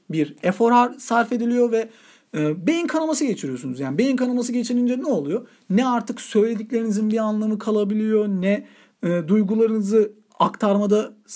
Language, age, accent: Turkish, 40-59, native